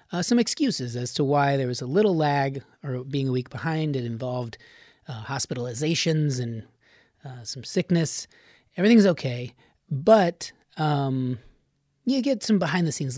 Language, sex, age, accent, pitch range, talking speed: English, male, 30-49, American, 130-185 Hz, 155 wpm